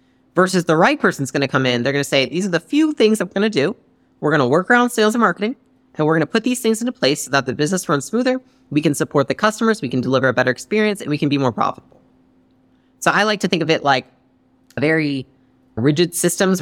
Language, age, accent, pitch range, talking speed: English, 30-49, American, 130-170 Hz, 260 wpm